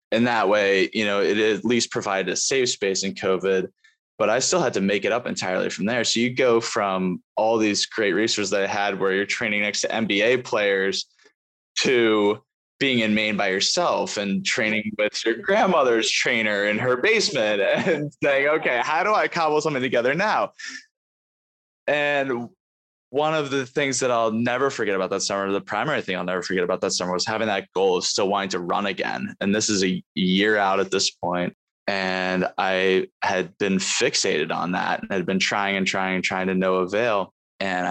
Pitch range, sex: 95-120 Hz, male